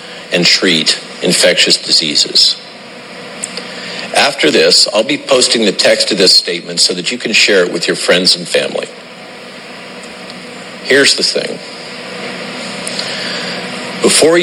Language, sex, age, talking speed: English, male, 50-69, 120 wpm